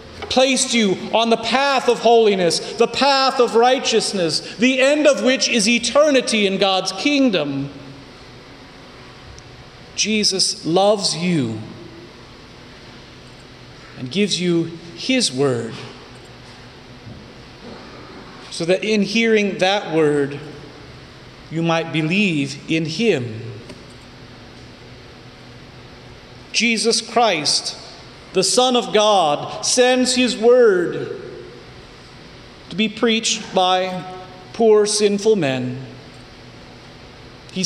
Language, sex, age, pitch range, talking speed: English, male, 40-59, 135-230 Hz, 90 wpm